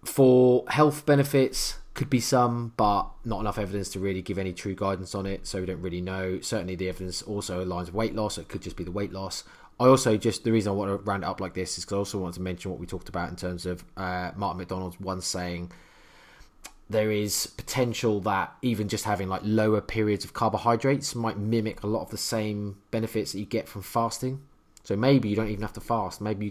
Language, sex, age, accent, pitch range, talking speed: English, male, 20-39, British, 95-110 Hz, 240 wpm